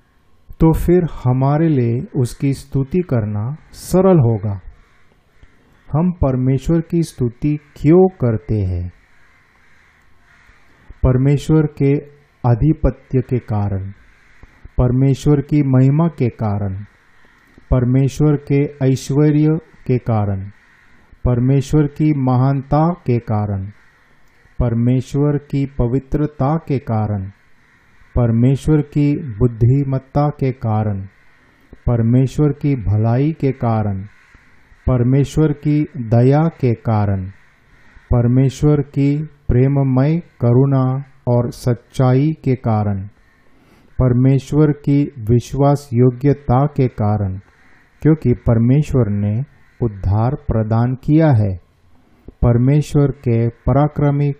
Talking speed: 90 wpm